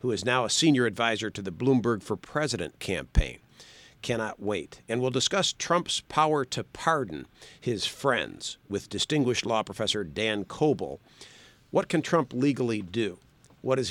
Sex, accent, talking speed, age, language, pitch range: male, American, 155 wpm, 50-69, English, 105-140 Hz